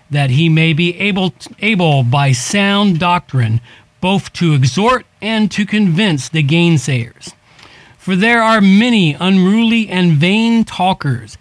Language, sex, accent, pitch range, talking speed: English, male, American, 140-195 Hz, 130 wpm